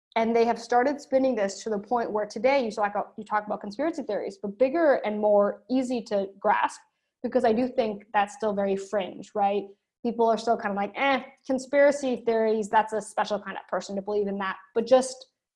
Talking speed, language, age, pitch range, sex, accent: 205 wpm, English, 20-39, 200-255 Hz, female, American